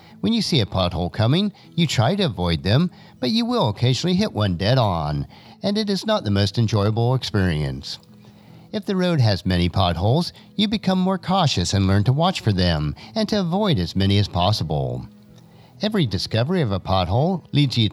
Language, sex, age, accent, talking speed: English, male, 50-69, American, 190 wpm